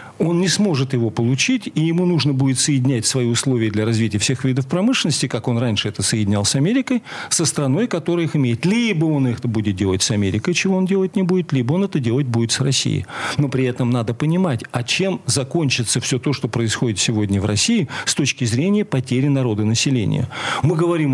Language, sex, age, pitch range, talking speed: Russian, male, 40-59, 125-185 Hz, 200 wpm